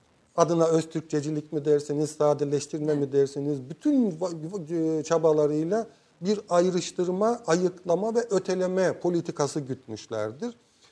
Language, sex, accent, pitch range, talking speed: Turkish, male, native, 145-195 Hz, 90 wpm